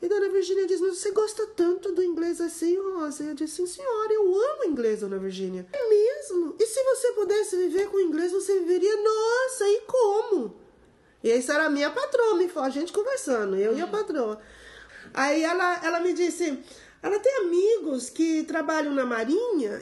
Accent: Brazilian